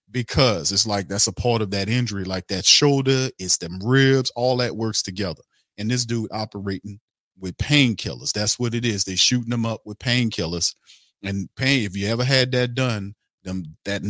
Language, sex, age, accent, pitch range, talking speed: English, male, 40-59, American, 100-120 Hz, 190 wpm